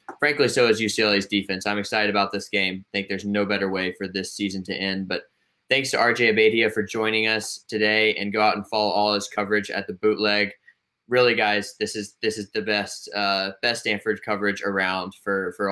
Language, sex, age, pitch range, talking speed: English, male, 20-39, 100-115 Hz, 215 wpm